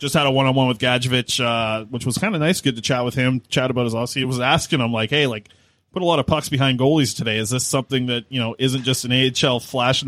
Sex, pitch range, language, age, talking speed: male, 120-145 Hz, English, 20-39, 300 wpm